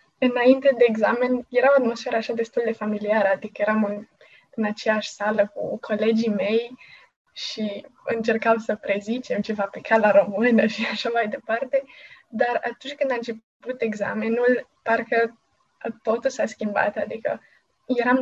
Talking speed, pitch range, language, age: 140 wpm, 215-250 Hz, Romanian, 20-39